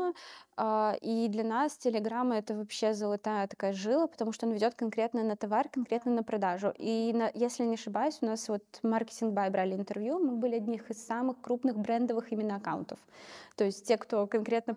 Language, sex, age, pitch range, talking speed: Russian, female, 20-39, 210-250 Hz, 180 wpm